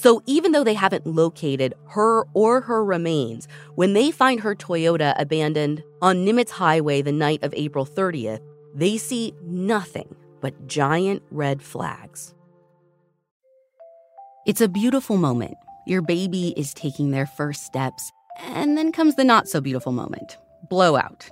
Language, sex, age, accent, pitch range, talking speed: English, female, 30-49, American, 145-205 Hz, 140 wpm